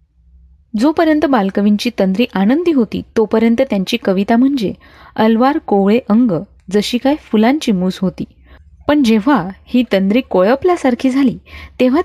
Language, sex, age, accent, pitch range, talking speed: Marathi, female, 20-39, native, 180-250 Hz, 120 wpm